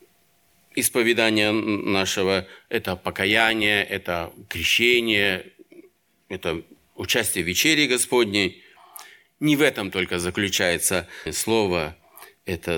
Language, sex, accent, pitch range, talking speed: Russian, male, native, 95-125 Hz, 85 wpm